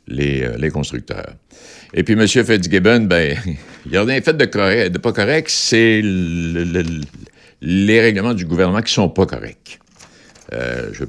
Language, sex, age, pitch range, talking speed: French, male, 60-79, 75-110 Hz, 180 wpm